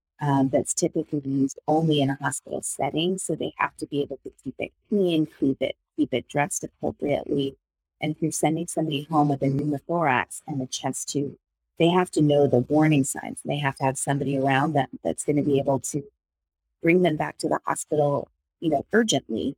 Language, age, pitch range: English, 30-49, 135-155 Hz